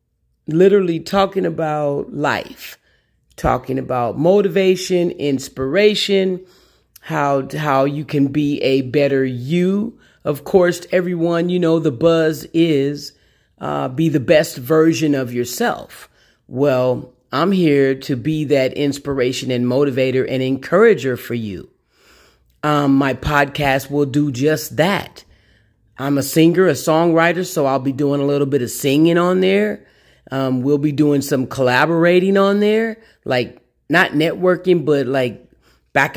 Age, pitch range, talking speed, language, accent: 40-59, 135-170 Hz, 135 wpm, English, American